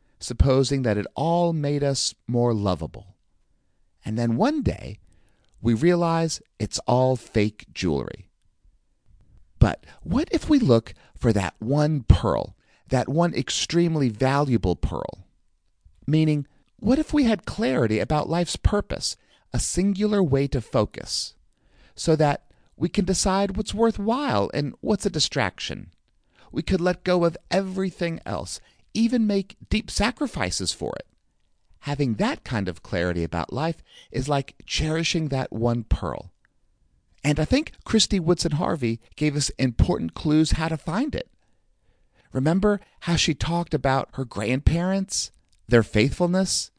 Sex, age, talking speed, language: male, 40-59, 135 wpm, English